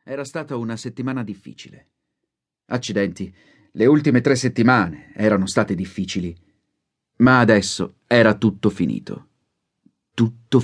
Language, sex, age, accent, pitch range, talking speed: Italian, male, 40-59, native, 100-125 Hz, 105 wpm